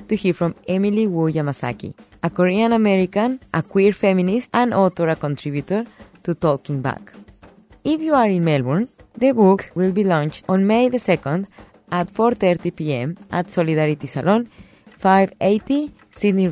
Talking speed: 150 wpm